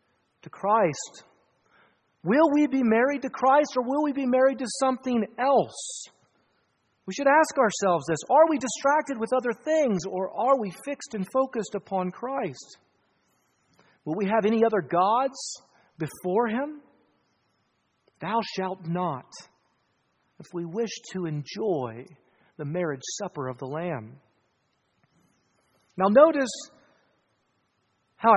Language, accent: English, American